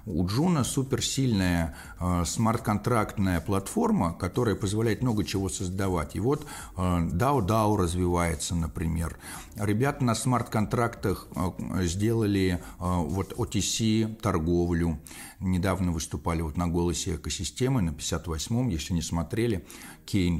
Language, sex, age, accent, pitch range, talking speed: Russian, male, 50-69, native, 85-110 Hz, 110 wpm